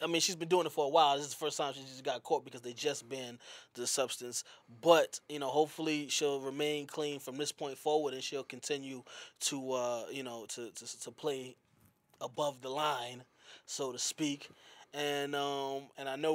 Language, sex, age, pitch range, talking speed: English, male, 20-39, 145-170 Hz, 210 wpm